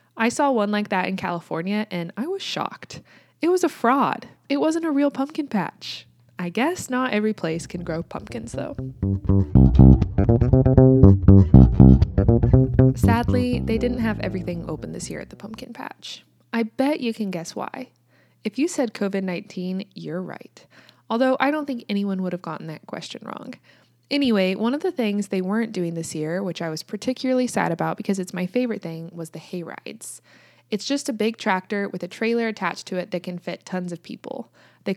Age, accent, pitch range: 20-39, American, 165-235 Hz